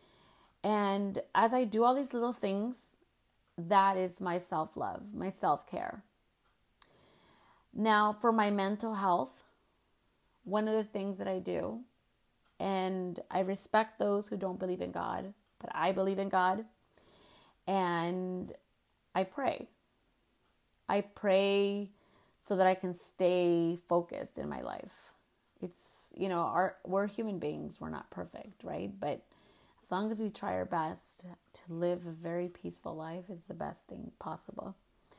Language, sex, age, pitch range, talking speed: English, female, 30-49, 180-210 Hz, 140 wpm